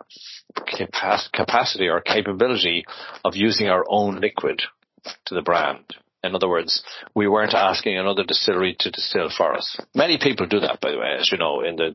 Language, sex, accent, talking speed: Hebrew, male, Irish, 180 wpm